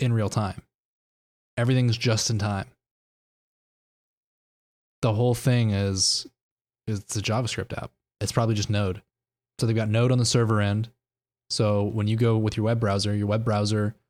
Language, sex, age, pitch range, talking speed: English, male, 20-39, 105-125 Hz, 160 wpm